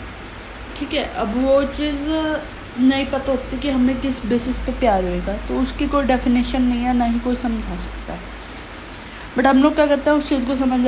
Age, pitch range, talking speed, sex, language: 20-39, 235-275 Hz, 205 wpm, female, Hindi